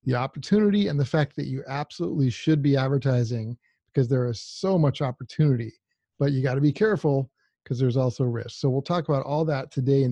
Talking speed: 210 wpm